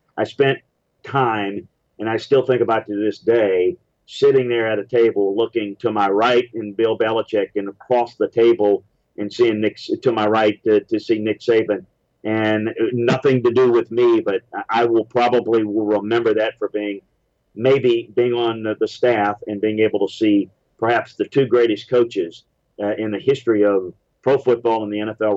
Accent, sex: American, male